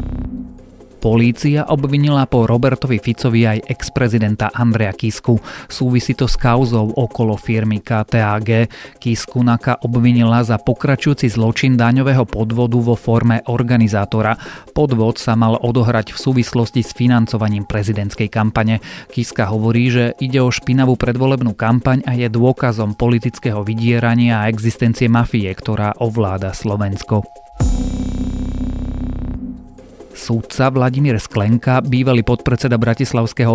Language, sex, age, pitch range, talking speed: Slovak, male, 30-49, 110-120 Hz, 110 wpm